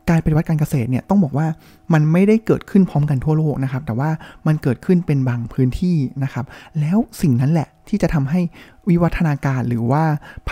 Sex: male